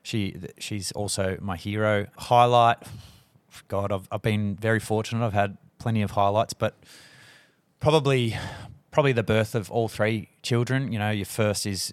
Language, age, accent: English, 30-49, Australian